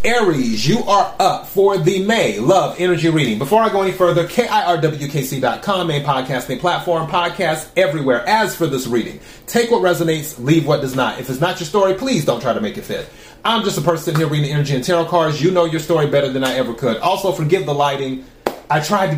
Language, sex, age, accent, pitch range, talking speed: English, male, 30-49, American, 140-185 Hz, 220 wpm